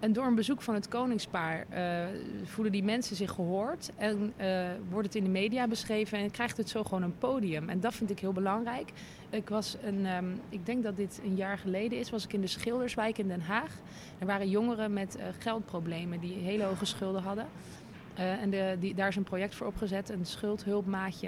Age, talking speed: 20-39, 210 wpm